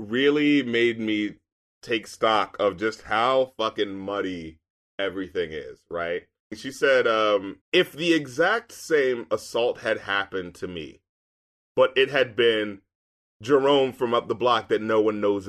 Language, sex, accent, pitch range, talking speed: English, male, American, 110-170 Hz, 145 wpm